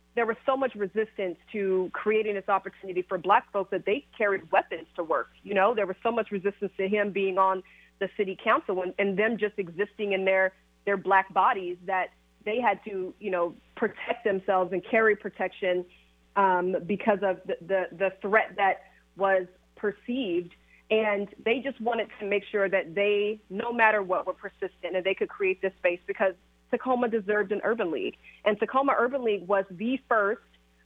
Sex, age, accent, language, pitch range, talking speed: female, 30-49, American, English, 185-215 Hz, 185 wpm